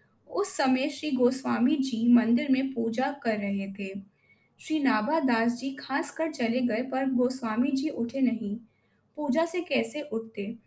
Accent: native